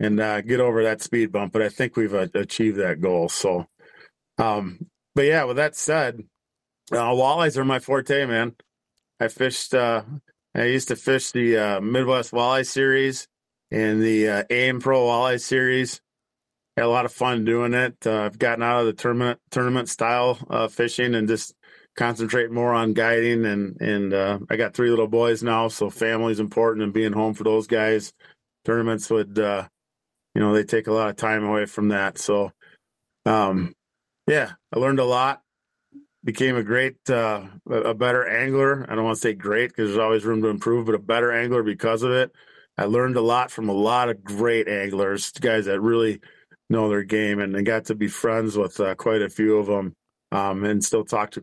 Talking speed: 200 wpm